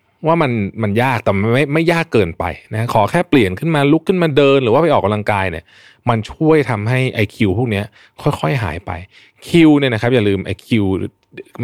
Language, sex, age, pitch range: Thai, male, 20-39, 100-135 Hz